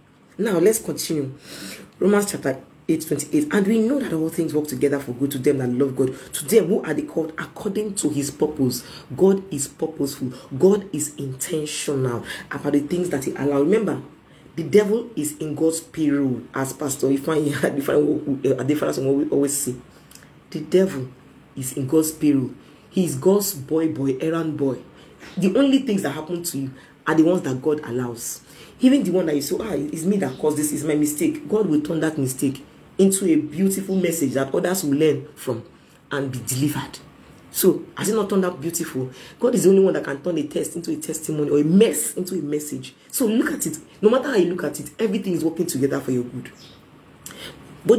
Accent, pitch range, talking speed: Nigerian, 140-180 Hz, 205 wpm